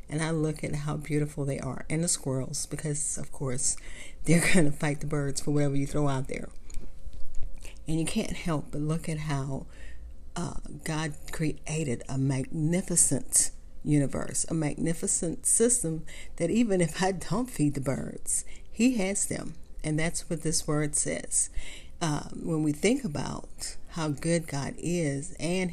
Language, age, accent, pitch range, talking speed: English, 40-59, American, 140-170 Hz, 165 wpm